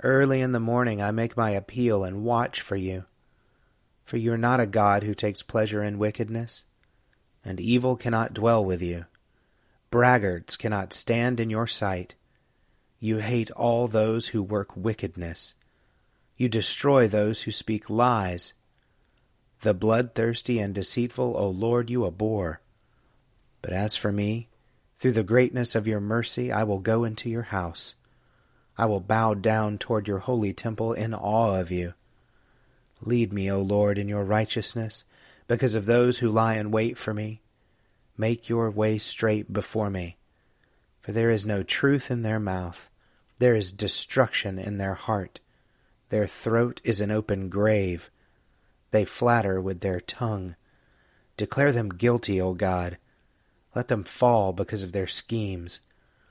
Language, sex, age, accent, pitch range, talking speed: English, male, 30-49, American, 100-115 Hz, 150 wpm